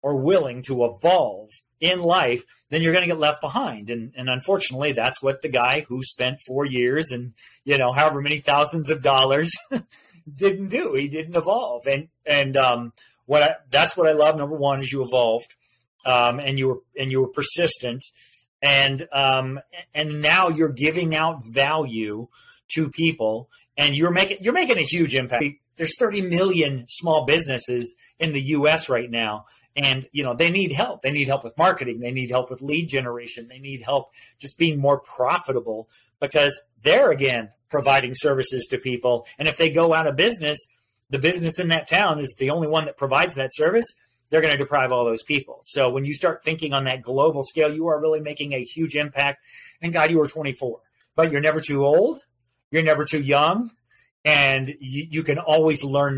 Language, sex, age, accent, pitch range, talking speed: English, male, 40-59, American, 130-155 Hz, 195 wpm